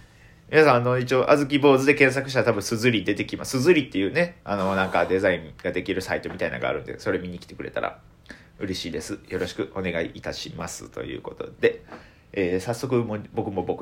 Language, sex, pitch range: Japanese, male, 95-155 Hz